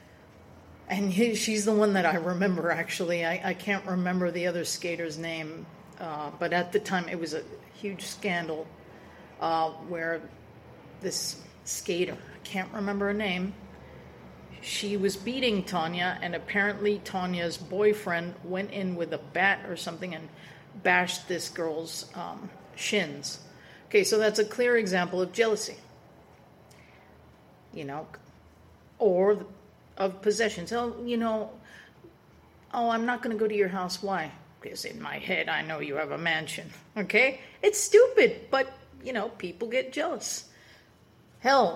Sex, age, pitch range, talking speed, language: female, 40-59, 170-215 Hz, 145 wpm, English